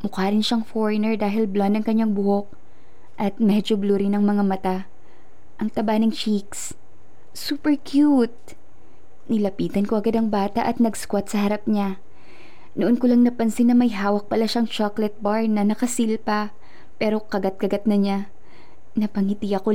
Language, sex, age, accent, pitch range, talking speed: Filipino, female, 20-39, native, 195-230 Hz, 155 wpm